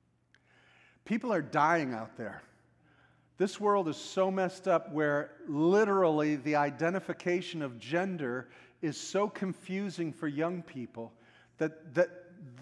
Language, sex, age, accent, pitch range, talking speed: English, male, 50-69, American, 155-200 Hz, 120 wpm